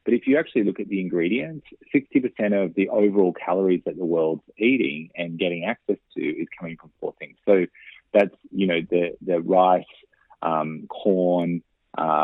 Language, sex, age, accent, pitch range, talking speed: English, male, 30-49, Australian, 85-105 Hz, 180 wpm